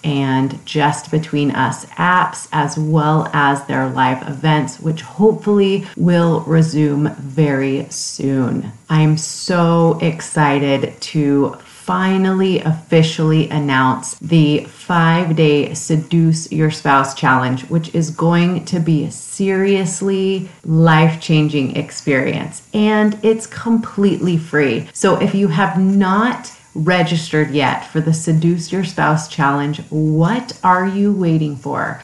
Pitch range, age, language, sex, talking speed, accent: 150-180 Hz, 30-49, English, female, 115 wpm, American